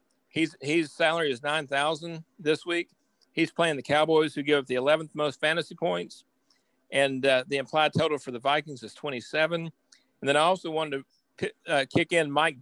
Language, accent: English, American